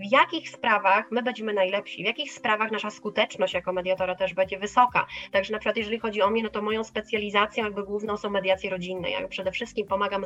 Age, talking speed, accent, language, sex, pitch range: 20-39, 210 wpm, native, Polish, female, 190-235 Hz